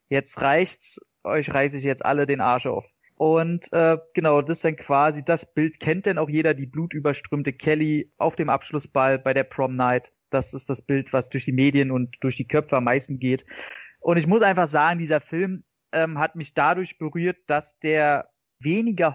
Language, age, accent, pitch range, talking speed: German, 30-49, German, 135-170 Hz, 195 wpm